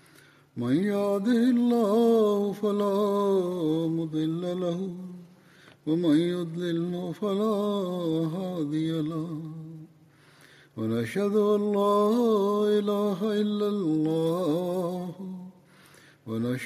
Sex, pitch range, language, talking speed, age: male, 160-205 Hz, Bulgarian, 45 wpm, 50-69